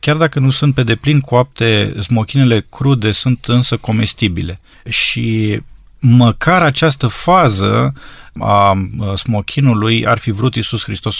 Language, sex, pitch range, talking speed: Romanian, male, 110-135 Hz, 125 wpm